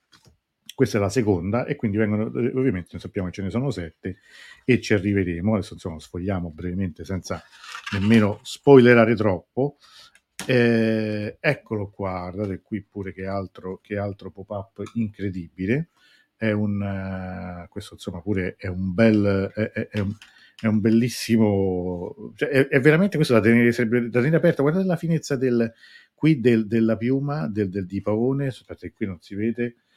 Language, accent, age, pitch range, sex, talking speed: Italian, native, 50-69, 95-120 Hz, male, 160 wpm